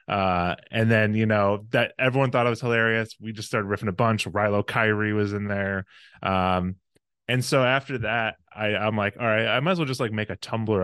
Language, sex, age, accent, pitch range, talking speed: English, male, 20-39, American, 95-115 Hz, 225 wpm